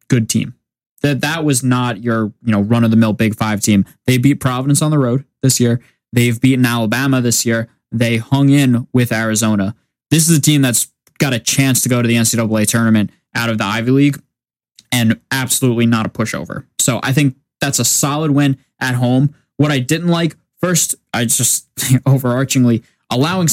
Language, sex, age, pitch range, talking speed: English, male, 10-29, 115-140 Hz, 185 wpm